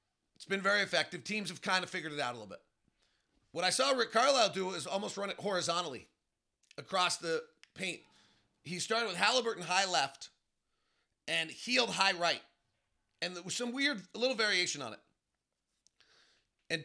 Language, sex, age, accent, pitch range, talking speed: English, male, 40-59, American, 175-225 Hz, 170 wpm